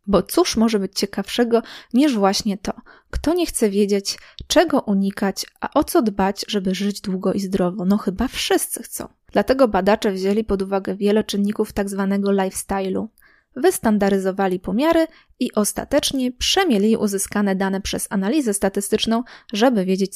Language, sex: Polish, female